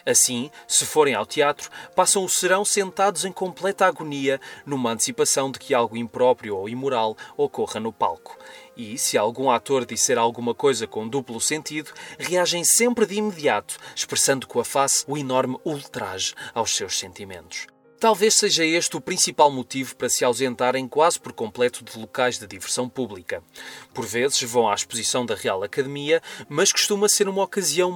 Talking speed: 165 wpm